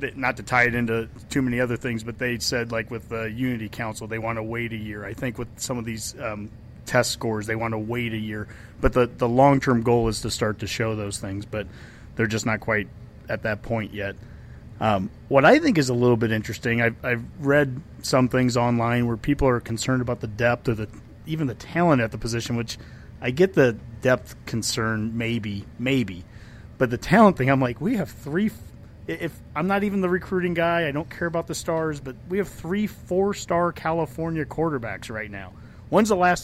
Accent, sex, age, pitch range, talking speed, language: American, male, 30-49, 115-140 Hz, 215 wpm, English